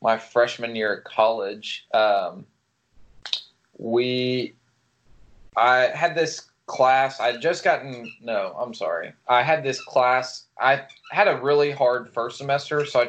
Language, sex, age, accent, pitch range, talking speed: English, male, 20-39, American, 115-140 Hz, 140 wpm